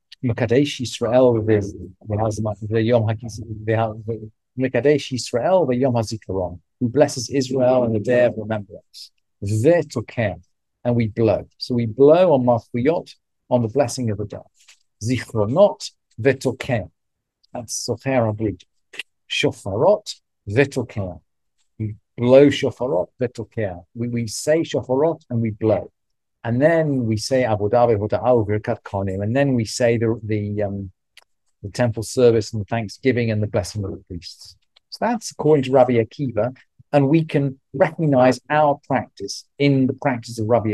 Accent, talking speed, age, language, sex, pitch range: British, 130 wpm, 50-69, English, male, 110-130 Hz